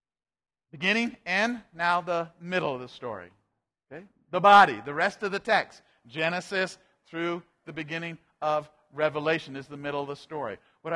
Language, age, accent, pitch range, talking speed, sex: English, 50-69, American, 160-200 Hz, 155 wpm, male